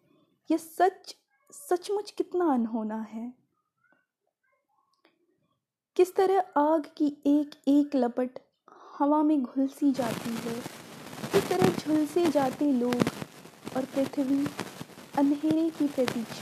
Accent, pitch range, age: native, 240-315 Hz, 20-39